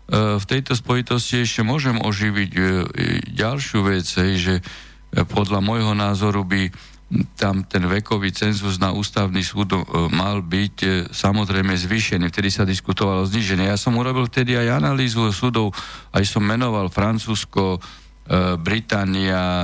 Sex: male